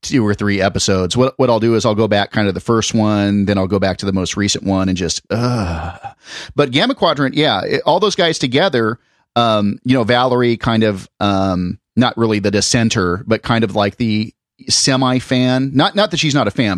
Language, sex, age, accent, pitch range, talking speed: English, male, 30-49, American, 100-130 Hz, 225 wpm